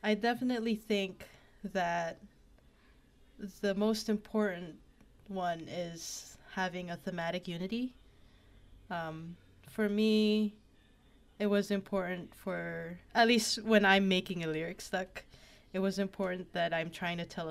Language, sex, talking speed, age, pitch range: English, female, 125 wpm, 10-29, 165-205 Hz